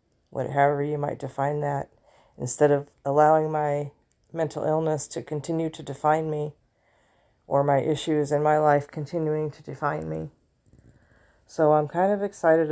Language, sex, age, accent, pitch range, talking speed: English, female, 40-59, American, 140-165 Hz, 145 wpm